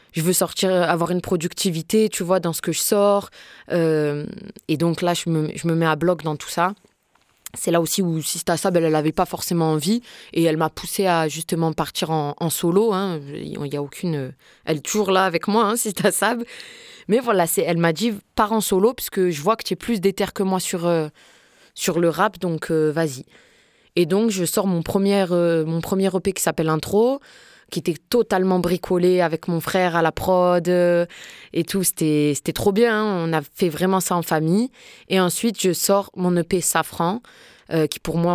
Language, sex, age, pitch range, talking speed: French, female, 20-39, 165-190 Hz, 215 wpm